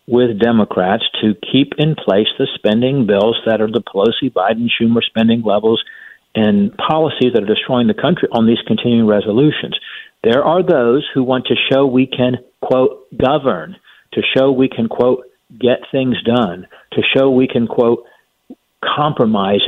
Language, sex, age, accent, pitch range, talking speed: English, male, 50-69, American, 115-145 Hz, 155 wpm